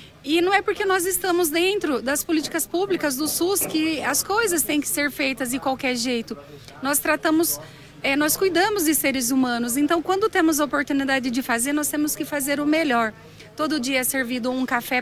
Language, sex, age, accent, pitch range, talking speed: Portuguese, female, 30-49, Brazilian, 255-310 Hz, 195 wpm